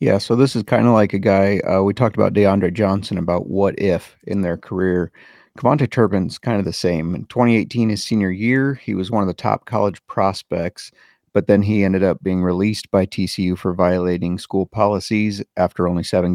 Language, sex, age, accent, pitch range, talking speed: English, male, 30-49, American, 90-105 Hz, 205 wpm